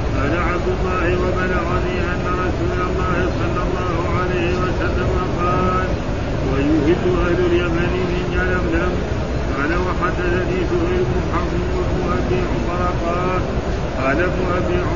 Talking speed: 45 wpm